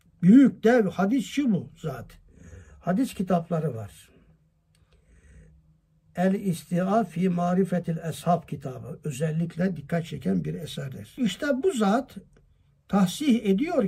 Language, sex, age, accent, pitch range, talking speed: Turkish, male, 60-79, native, 155-215 Hz, 100 wpm